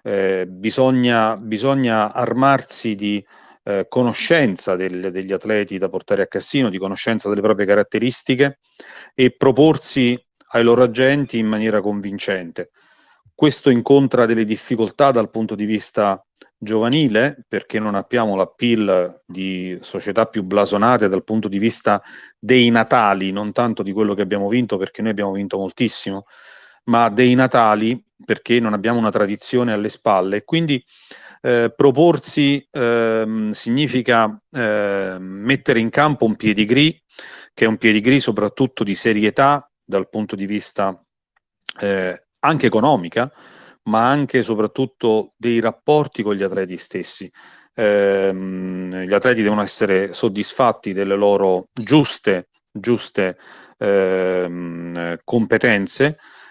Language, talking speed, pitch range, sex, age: Italian, 125 wpm, 100-125 Hz, male, 40-59